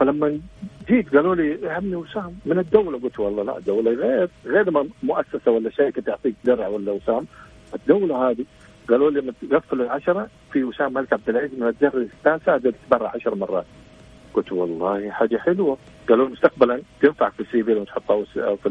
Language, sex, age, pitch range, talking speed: Arabic, male, 50-69, 115-170 Hz, 175 wpm